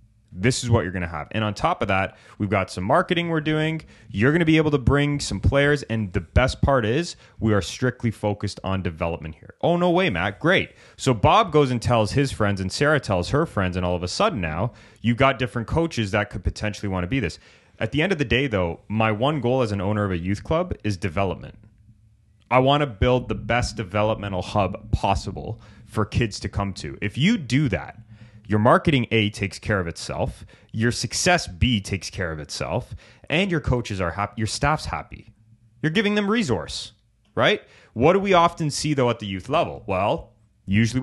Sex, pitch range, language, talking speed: male, 100-135 Hz, English, 220 wpm